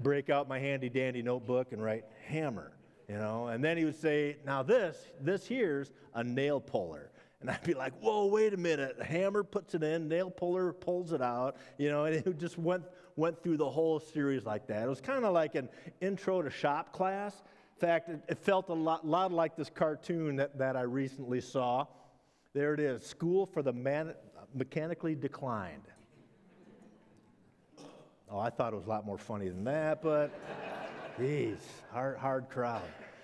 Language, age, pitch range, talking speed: English, 50-69, 130-165 Hz, 185 wpm